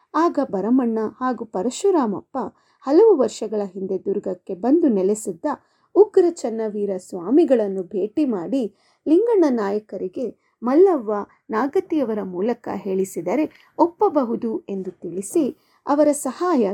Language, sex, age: Kannada, female, 30-49